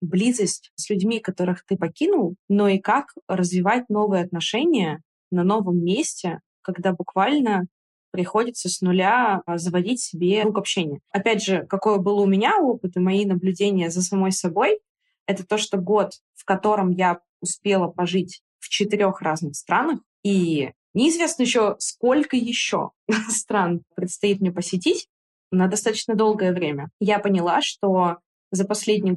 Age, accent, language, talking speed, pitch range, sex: 20-39, native, Russian, 140 wpm, 180-215 Hz, female